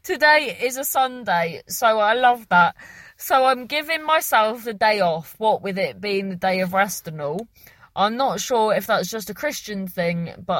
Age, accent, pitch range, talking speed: 30-49, British, 175-265 Hz, 200 wpm